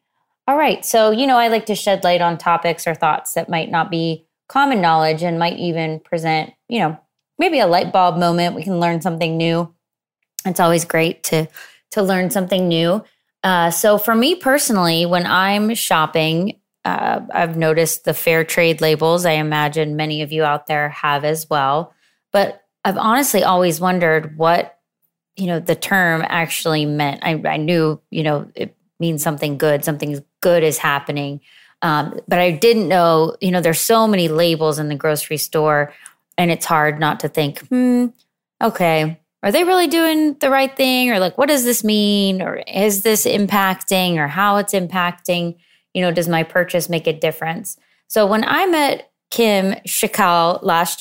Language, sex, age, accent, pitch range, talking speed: English, female, 20-39, American, 160-200 Hz, 180 wpm